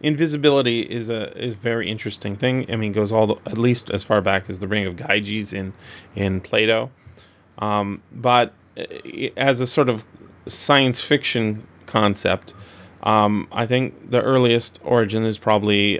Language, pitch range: English, 105-125 Hz